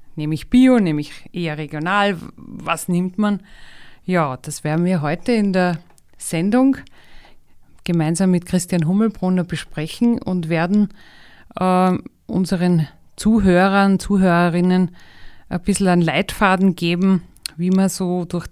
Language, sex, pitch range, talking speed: German, female, 170-205 Hz, 115 wpm